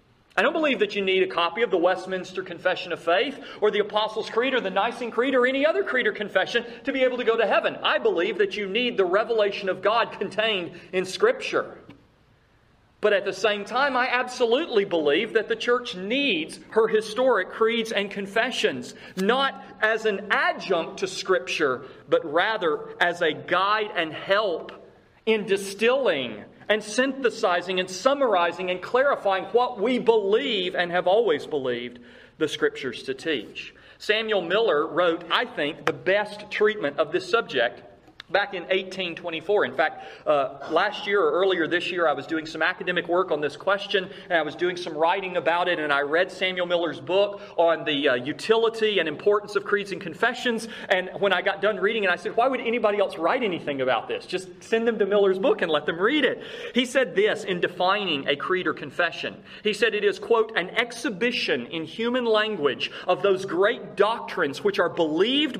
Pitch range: 180-235 Hz